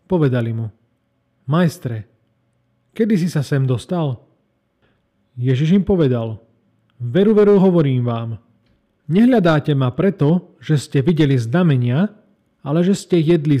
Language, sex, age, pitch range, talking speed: Slovak, male, 40-59, 120-170 Hz, 115 wpm